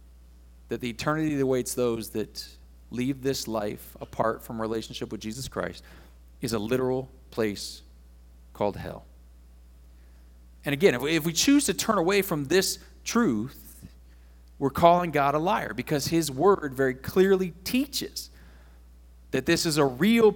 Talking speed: 145 wpm